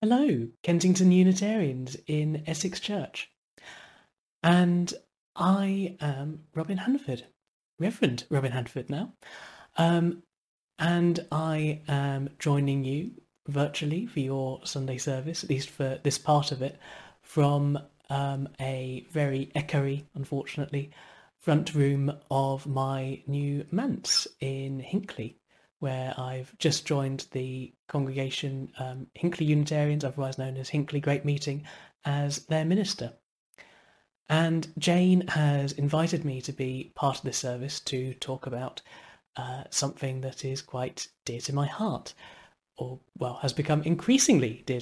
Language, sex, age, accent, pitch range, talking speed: English, male, 30-49, British, 135-160 Hz, 125 wpm